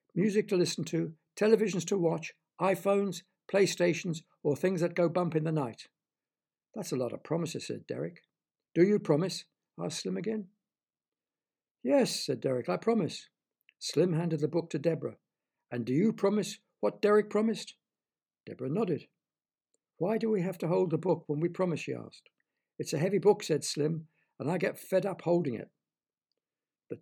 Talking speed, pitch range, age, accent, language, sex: 170 wpm, 150-190 Hz, 60-79, British, English, male